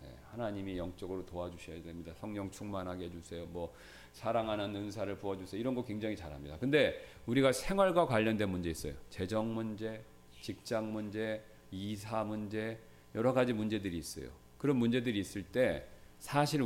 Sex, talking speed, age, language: male, 130 wpm, 40-59, English